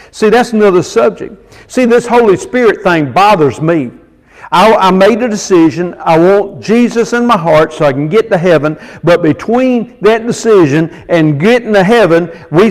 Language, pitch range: English, 160-225 Hz